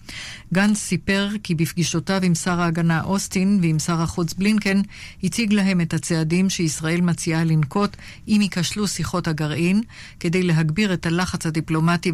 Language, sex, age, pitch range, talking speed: Hebrew, female, 50-69, 160-190 Hz, 140 wpm